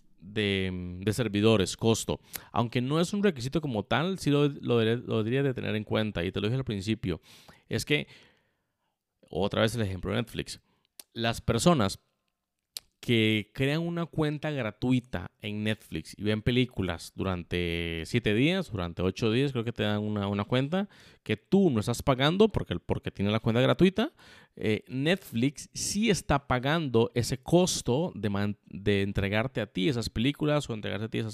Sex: male